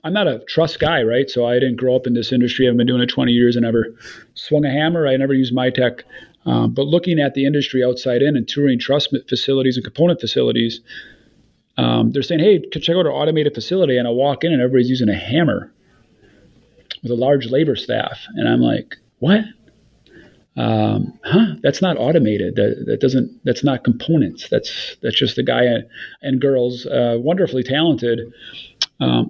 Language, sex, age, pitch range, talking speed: English, male, 40-59, 120-140 Hz, 195 wpm